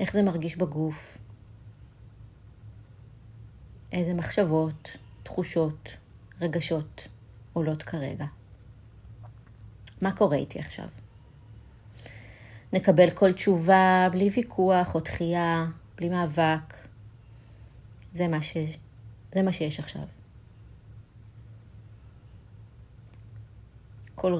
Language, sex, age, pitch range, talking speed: Hebrew, female, 30-49, 110-170 Hz, 75 wpm